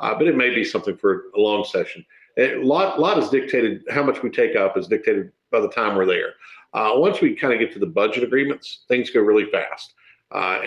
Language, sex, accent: English, male, American